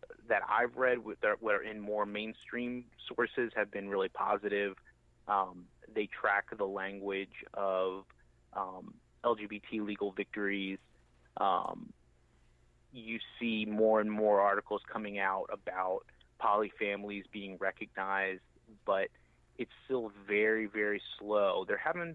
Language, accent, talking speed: English, American, 125 wpm